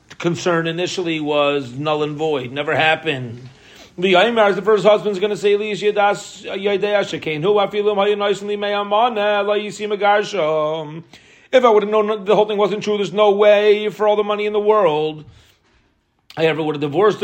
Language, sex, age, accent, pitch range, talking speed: English, male, 40-59, American, 155-210 Hz, 135 wpm